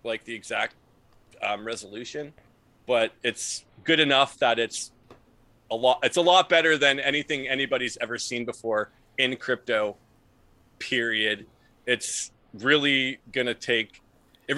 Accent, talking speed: American, 130 wpm